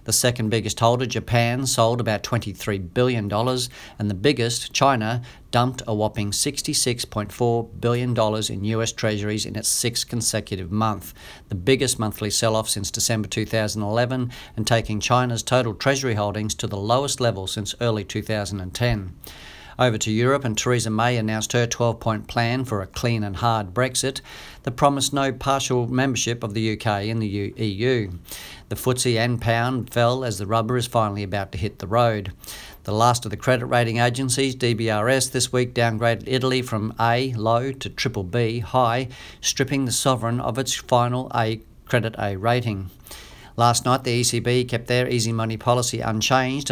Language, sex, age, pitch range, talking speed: English, male, 50-69, 110-125 Hz, 165 wpm